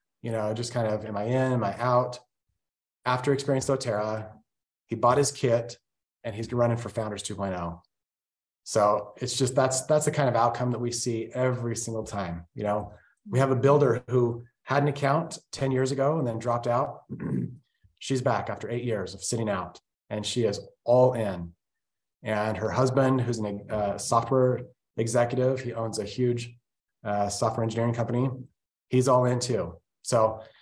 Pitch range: 110-130 Hz